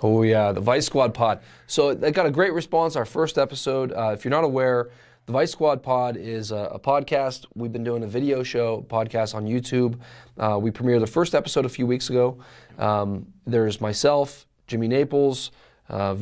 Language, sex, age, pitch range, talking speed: English, male, 20-39, 110-135 Hz, 195 wpm